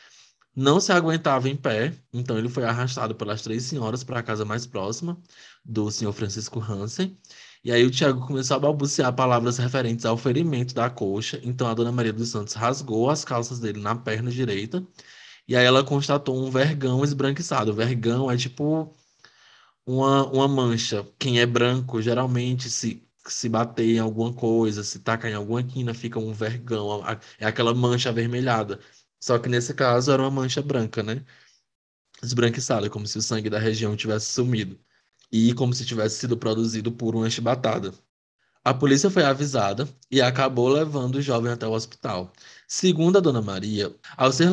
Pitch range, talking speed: 110-135 Hz, 175 wpm